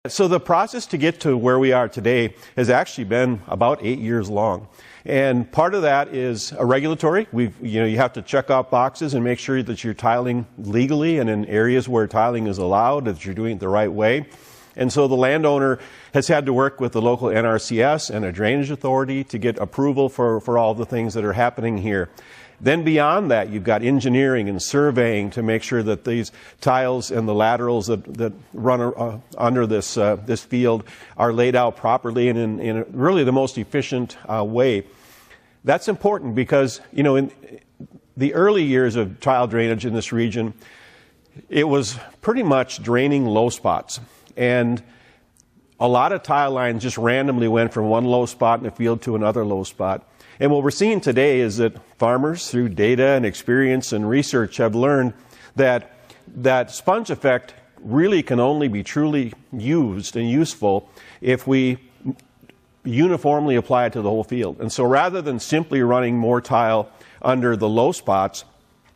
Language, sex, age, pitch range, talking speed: English, male, 50-69, 115-135 Hz, 185 wpm